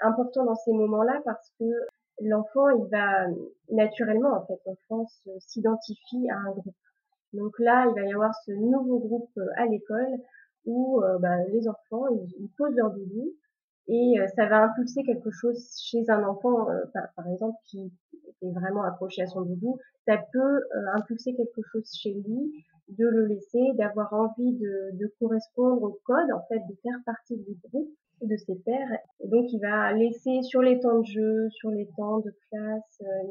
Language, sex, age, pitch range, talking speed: French, female, 30-49, 205-245 Hz, 180 wpm